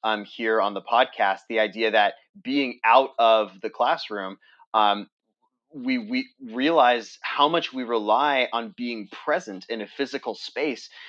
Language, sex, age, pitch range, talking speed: English, male, 30-49, 110-135 Hz, 150 wpm